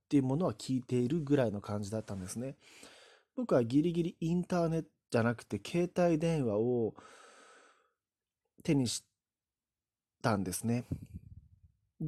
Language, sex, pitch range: Japanese, male, 110-160 Hz